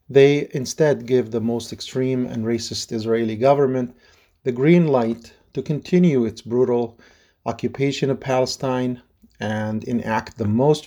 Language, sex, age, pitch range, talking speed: English, male, 40-59, 110-135 Hz, 130 wpm